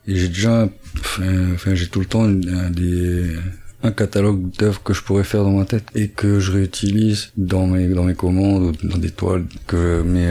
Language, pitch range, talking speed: French, 90-105 Hz, 210 wpm